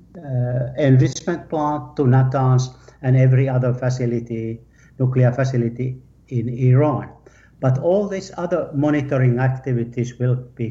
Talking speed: 120 wpm